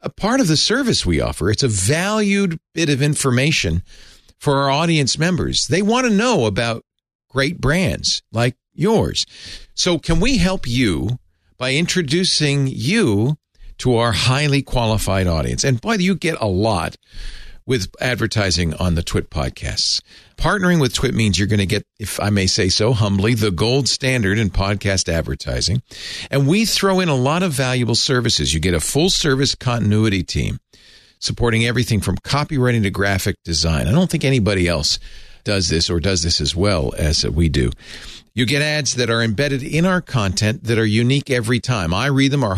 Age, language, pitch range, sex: 50-69, English, 105-150 Hz, male